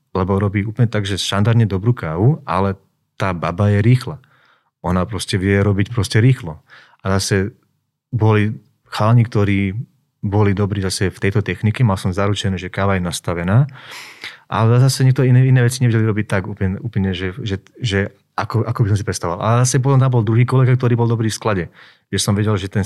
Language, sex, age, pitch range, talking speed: Slovak, male, 30-49, 95-115 Hz, 195 wpm